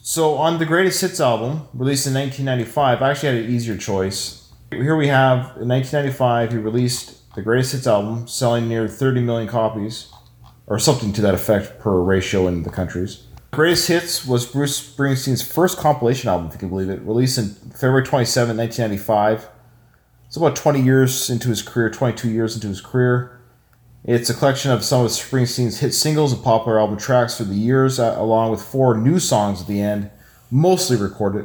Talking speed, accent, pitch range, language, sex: 185 wpm, American, 105-130 Hz, English, male